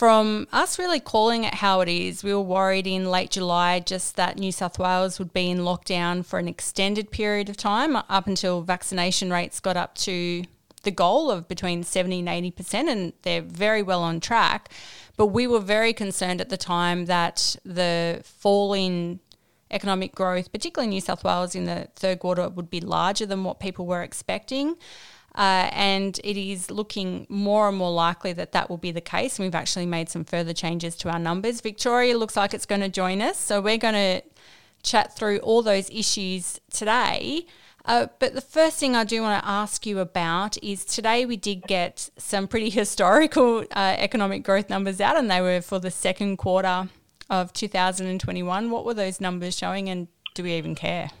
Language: English